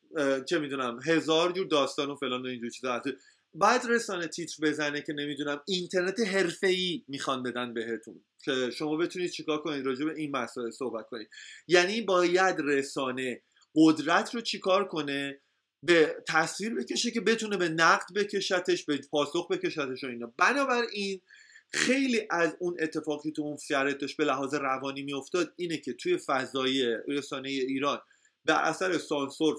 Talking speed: 140 wpm